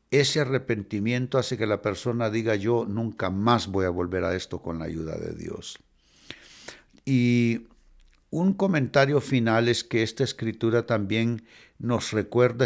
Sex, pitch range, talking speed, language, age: male, 95-130 Hz, 145 wpm, Spanish, 60-79